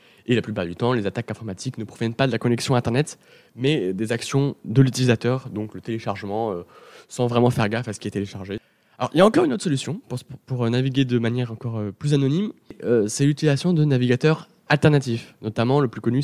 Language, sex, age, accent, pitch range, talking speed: French, male, 20-39, French, 115-145 Hz, 220 wpm